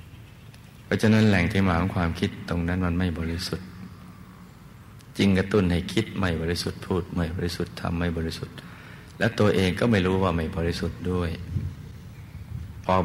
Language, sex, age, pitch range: Thai, male, 60-79, 85-105 Hz